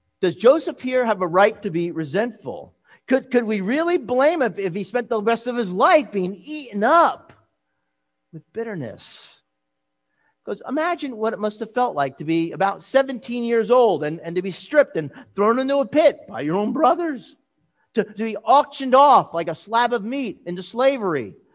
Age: 50-69